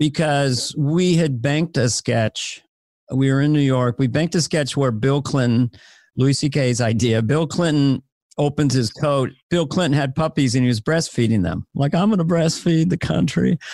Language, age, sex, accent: English, 50-69, male, American